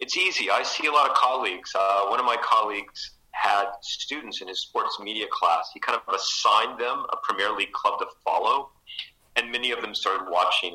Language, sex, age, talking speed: English, male, 40-59, 205 wpm